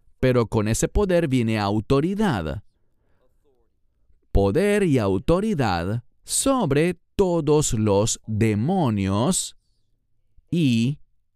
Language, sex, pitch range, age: English, male, 105-155 Hz, 40-59